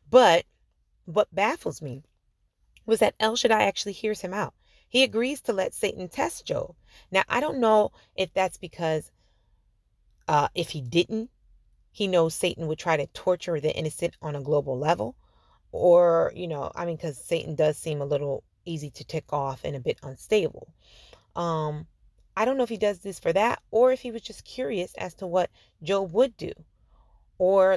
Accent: American